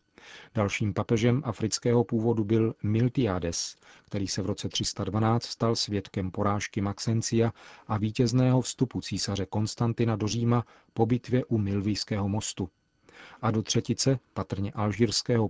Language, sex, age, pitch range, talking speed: Czech, male, 40-59, 100-120 Hz, 125 wpm